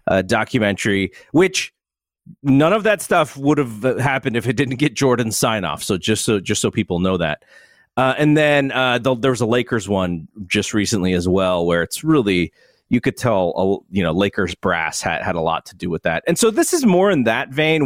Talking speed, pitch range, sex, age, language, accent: 230 wpm, 100-145 Hz, male, 40-59, English, American